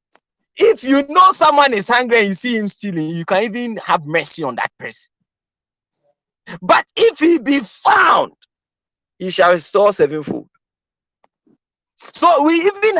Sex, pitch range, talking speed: male, 175-290 Hz, 145 wpm